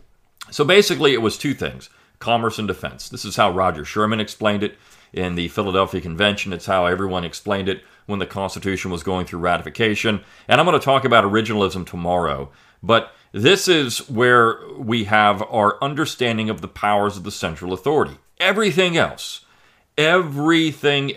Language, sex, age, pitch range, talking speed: English, male, 40-59, 95-120 Hz, 165 wpm